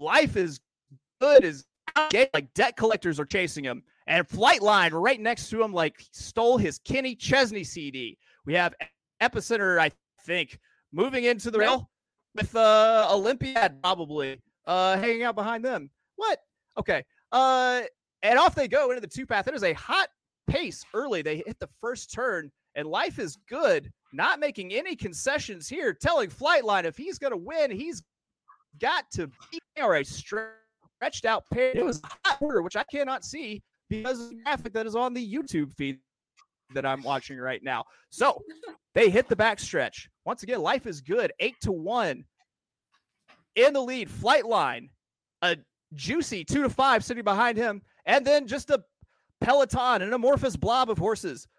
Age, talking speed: 30-49, 170 wpm